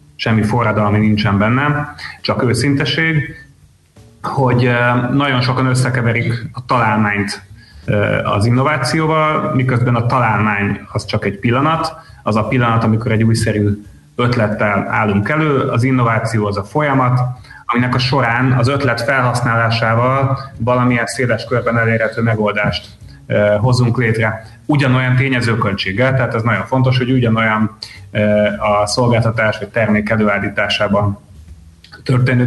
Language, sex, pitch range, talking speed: Hungarian, male, 110-130 Hz, 115 wpm